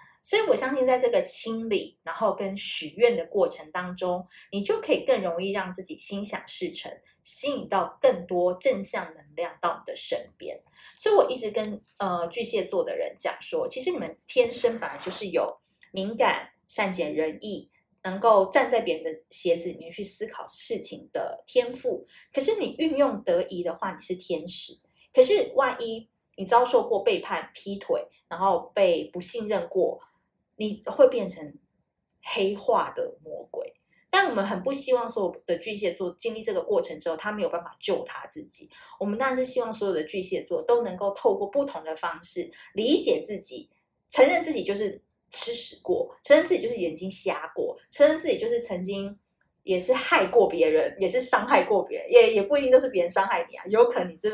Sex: female